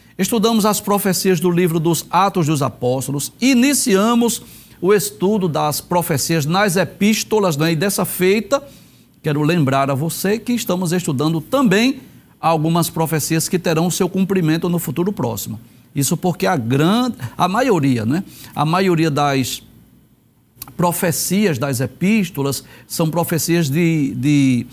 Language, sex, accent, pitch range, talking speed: Portuguese, male, Brazilian, 160-205 Hz, 130 wpm